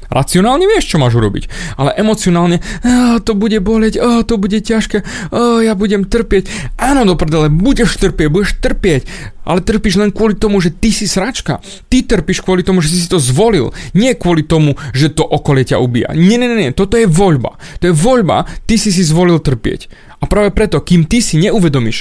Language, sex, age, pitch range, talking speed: Slovak, male, 30-49, 130-190 Hz, 195 wpm